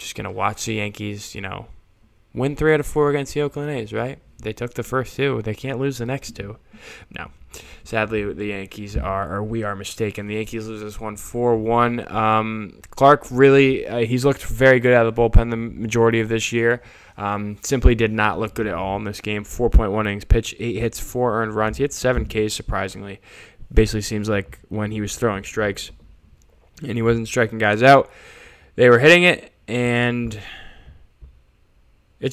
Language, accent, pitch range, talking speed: English, American, 100-120 Hz, 195 wpm